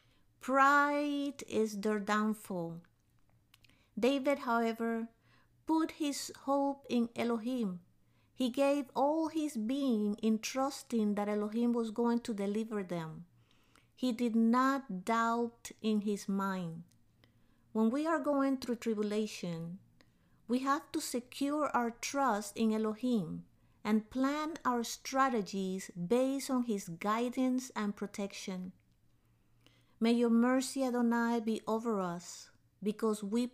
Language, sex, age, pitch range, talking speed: English, female, 50-69, 185-245 Hz, 115 wpm